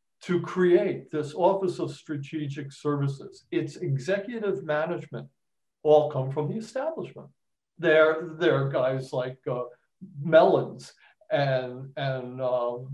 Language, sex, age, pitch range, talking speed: English, male, 60-79, 135-160 Hz, 110 wpm